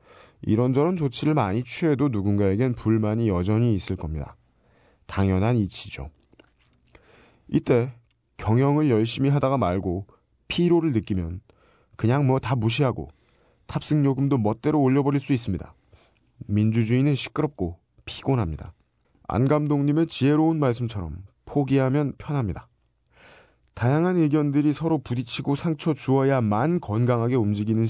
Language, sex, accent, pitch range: Korean, male, native, 100-140 Hz